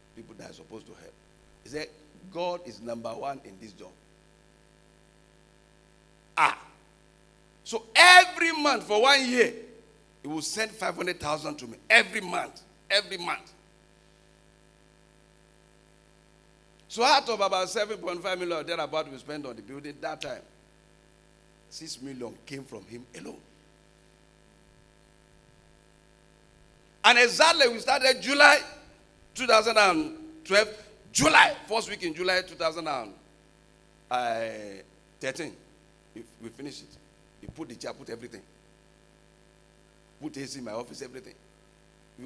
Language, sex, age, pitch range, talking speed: English, male, 50-69, 145-200 Hz, 115 wpm